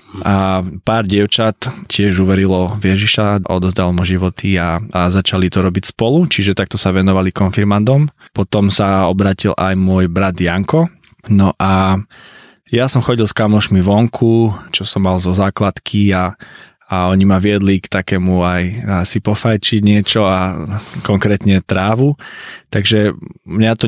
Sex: male